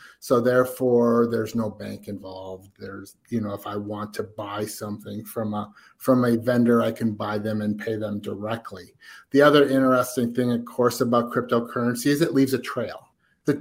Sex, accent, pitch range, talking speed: male, American, 115-140 Hz, 180 wpm